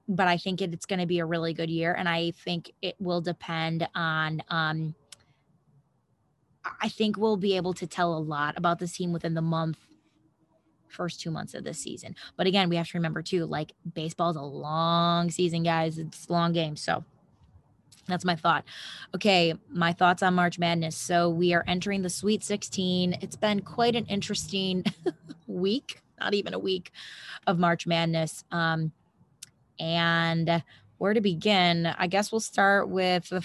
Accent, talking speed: American, 175 wpm